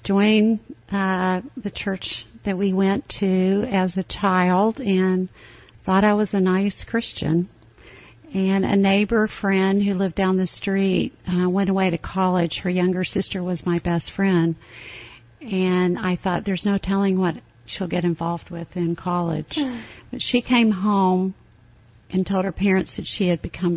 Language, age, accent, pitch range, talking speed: English, 50-69, American, 175-195 Hz, 160 wpm